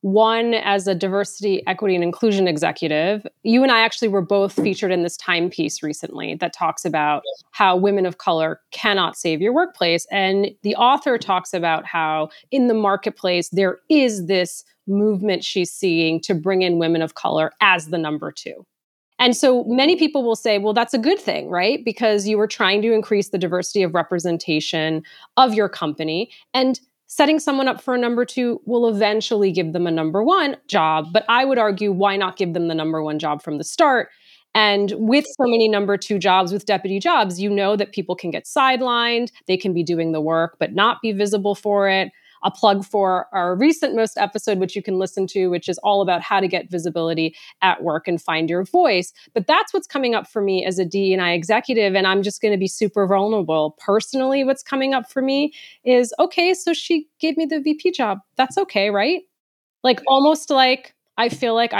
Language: English